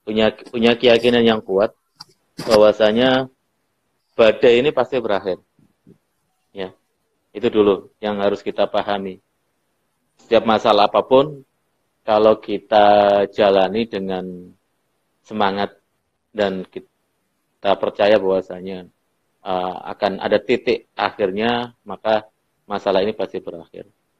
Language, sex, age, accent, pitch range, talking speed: Indonesian, male, 30-49, native, 95-115 Hz, 95 wpm